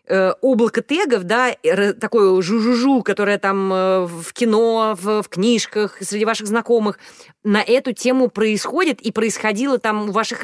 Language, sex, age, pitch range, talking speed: Russian, female, 20-39, 190-240 Hz, 130 wpm